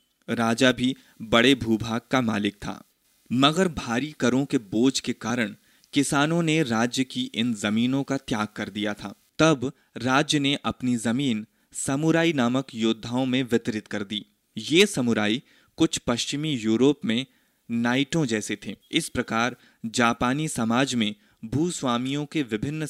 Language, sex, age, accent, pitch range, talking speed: Hindi, male, 30-49, native, 115-150 Hz, 140 wpm